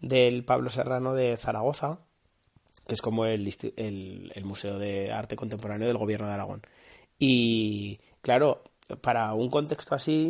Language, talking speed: Spanish, 145 wpm